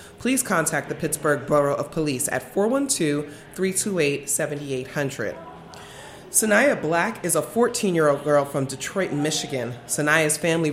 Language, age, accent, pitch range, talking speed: English, 30-49, American, 145-195 Hz, 110 wpm